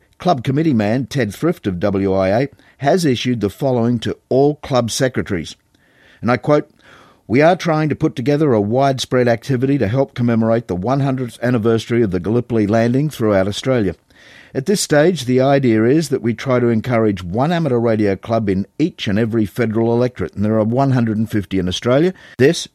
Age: 50-69